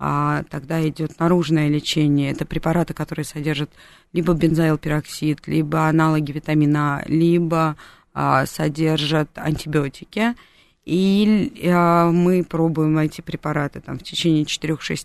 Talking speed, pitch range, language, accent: 105 wpm, 155-180 Hz, Russian, native